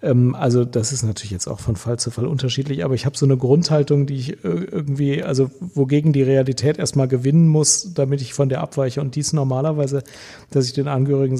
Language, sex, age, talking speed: German, male, 40-59, 205 wpm